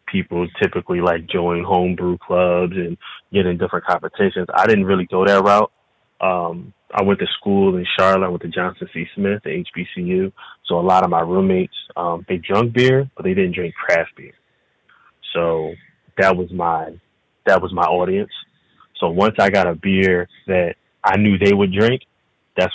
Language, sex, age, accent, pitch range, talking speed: English, male, 20-39, American, 90-95 Hz, 180 wpm